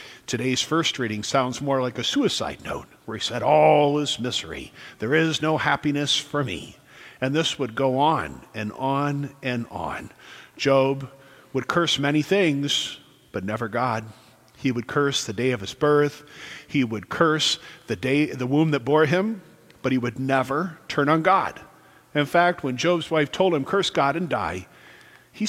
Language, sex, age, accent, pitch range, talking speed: English, male, 50-69, American, 125-155 Hz, 175 wpm